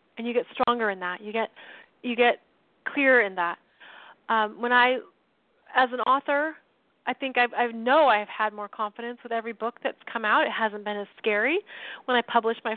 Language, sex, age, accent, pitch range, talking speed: English, female, 30-49, American, 225-280 Hz, 200 wpm